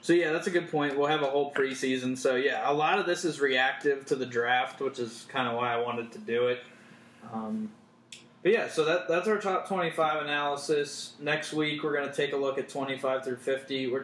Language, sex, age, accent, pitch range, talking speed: English, male, 20-39, American, 125-140 Hz, 235 wpm